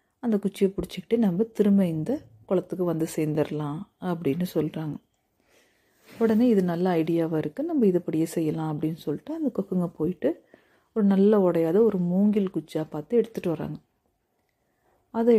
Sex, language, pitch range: female, Tamil, 165-215 Hz